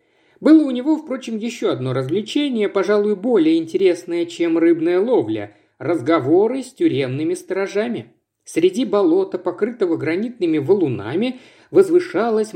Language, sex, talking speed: Russian, male, 115 wpm